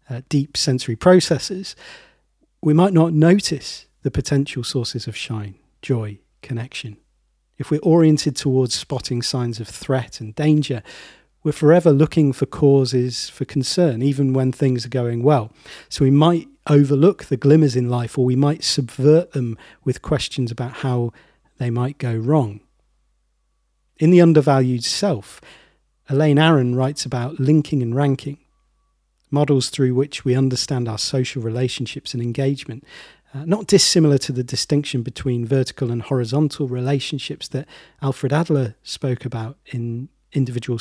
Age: 40-59